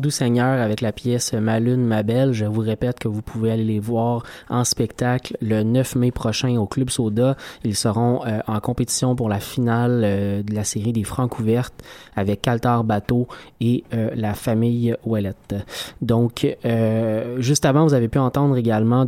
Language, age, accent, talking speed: French, 20-39, Canadian, 190 wpm